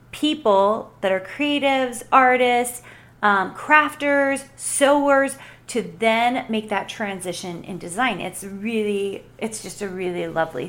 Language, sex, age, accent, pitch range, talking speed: English, female, 30-49, American, 195-255 Hz, 125 wpm